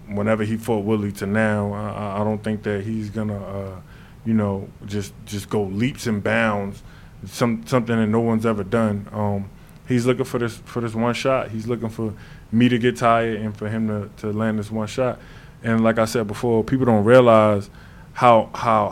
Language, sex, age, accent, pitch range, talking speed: English, male, 20-39, American, 105-120 Hz, 205 wpm